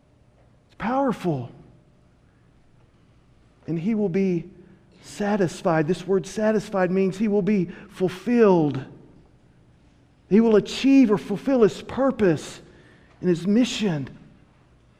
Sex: male